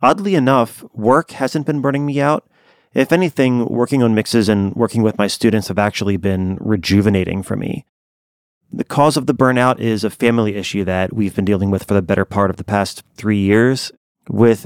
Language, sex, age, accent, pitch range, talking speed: English, male, 30-49, American, 100-130 Hz, 195 wpm